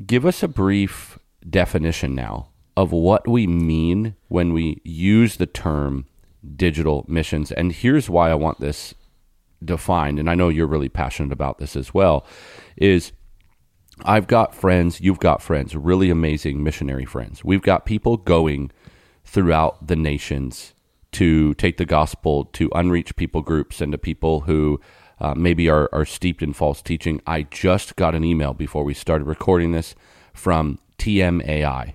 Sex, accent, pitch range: male, American, 75-90 Hz